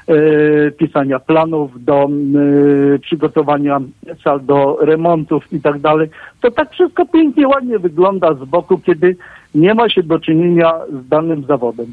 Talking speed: 135 wpm